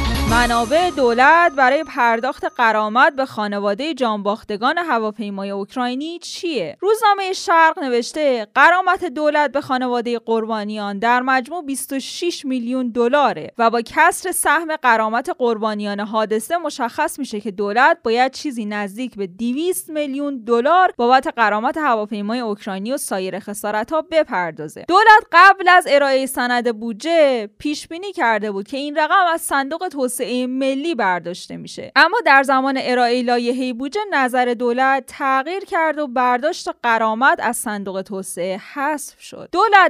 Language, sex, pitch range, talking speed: Persian, female, 215-295 Hz, 135 wpm